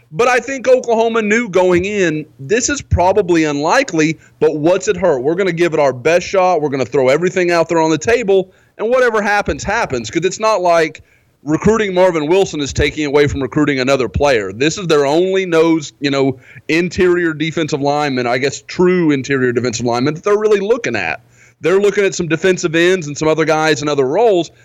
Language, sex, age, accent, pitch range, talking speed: English, male, 30-49, American, 140-190 Hz, 205 wpm